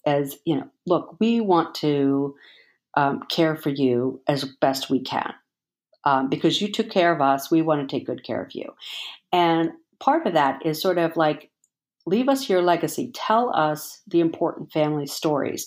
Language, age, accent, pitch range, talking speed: English, 50-69, American, 145-185 Hz, 185 wpm